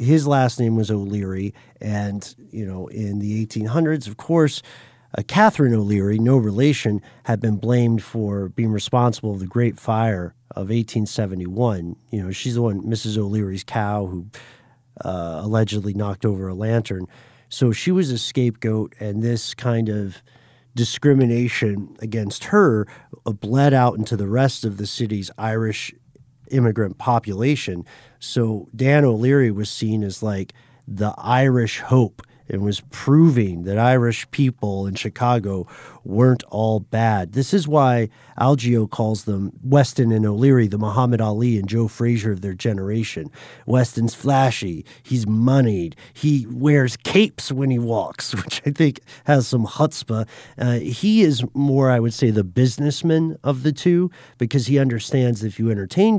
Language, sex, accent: English, male, American